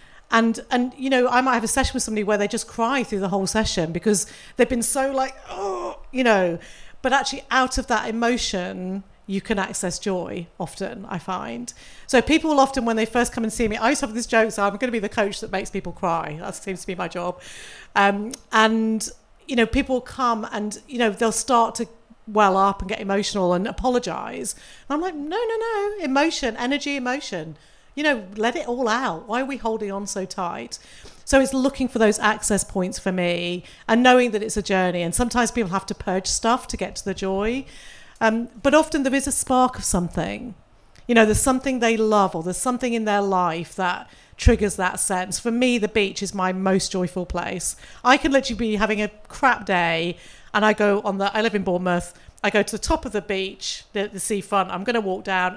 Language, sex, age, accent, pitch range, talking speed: English, female, 40-59, British, 190-245 Hz, 225 wpm